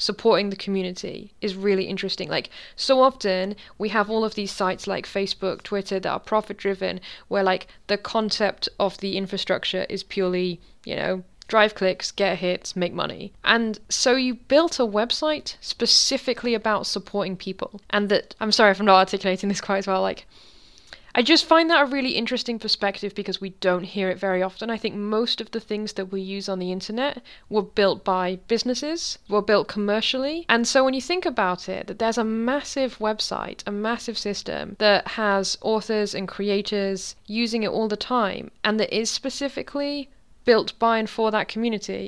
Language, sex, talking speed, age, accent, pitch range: English, female, 185 wpm, 10-29, British, 195-235 Hz